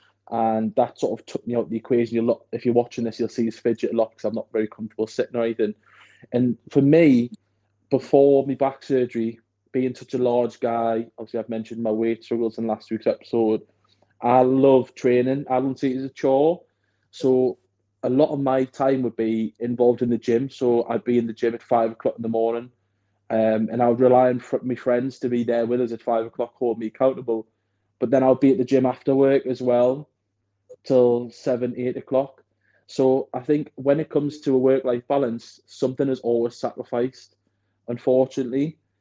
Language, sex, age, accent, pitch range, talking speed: English, male, 20-39, British, 115-130 Hz, 210 wpm